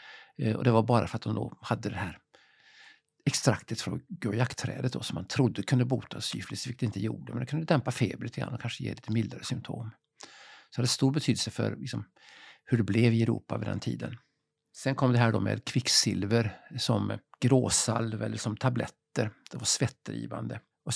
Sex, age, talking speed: male, 50-69, 190 wpm